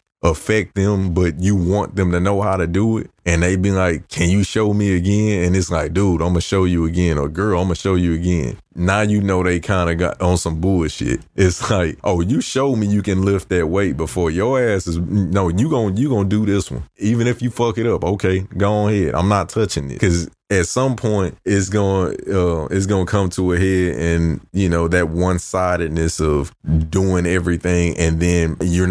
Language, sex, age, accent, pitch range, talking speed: English, male, 20-39, American, 85-100 Hz, 230 wpm